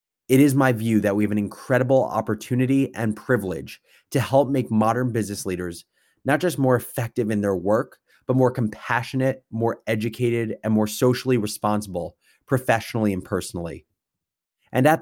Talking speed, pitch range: 155 wpm, 105-125 Hz